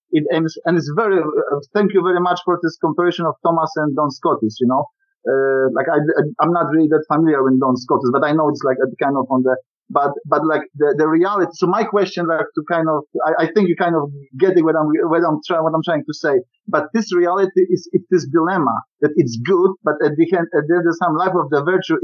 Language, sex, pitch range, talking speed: English, male, 150-185 Hz, 260 wpm